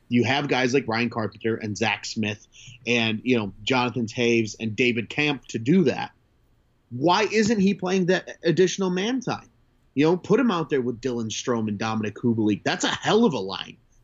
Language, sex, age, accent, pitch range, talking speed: English, male, 30-49, American, 115-150 Hz, 195 wpm